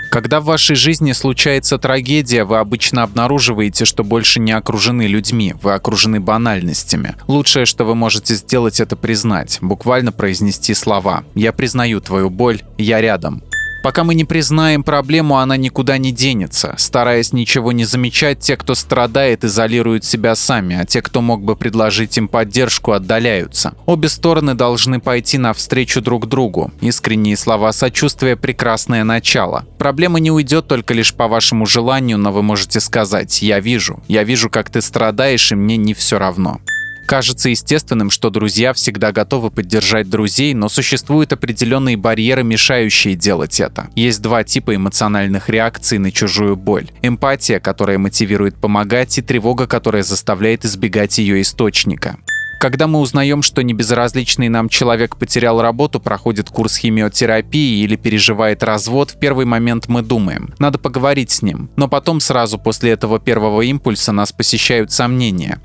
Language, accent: Russian, native